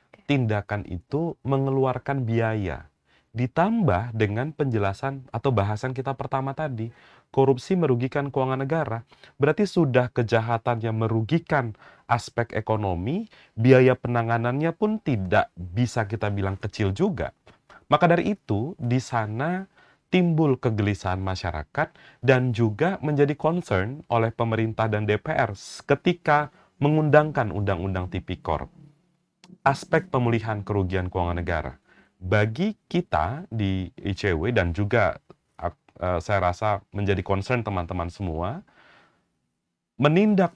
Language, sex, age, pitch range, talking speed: Indonesian, male, 30-49, 105-145 Hz, 105 wpm